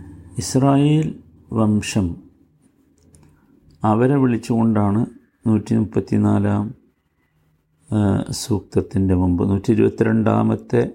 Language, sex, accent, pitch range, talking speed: Malayalam, male, native, 95-115 Hz, 55 wpm